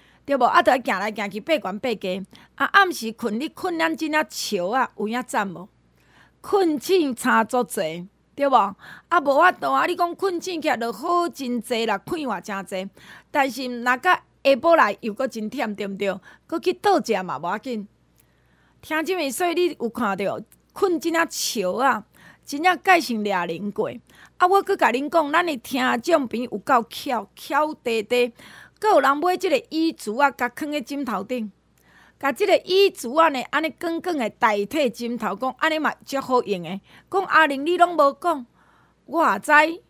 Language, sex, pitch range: Chinese, female, 225-330 Hz